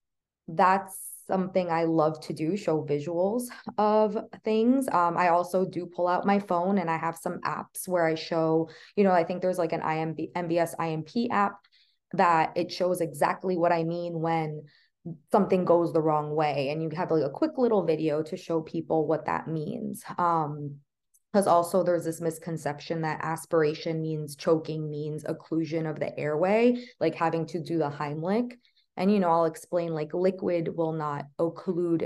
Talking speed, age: 175 wpm, 20-39